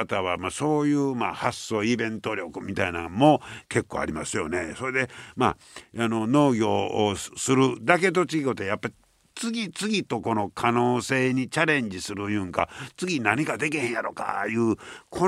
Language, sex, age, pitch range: Japanese, male, 60-79, 100-140 Hz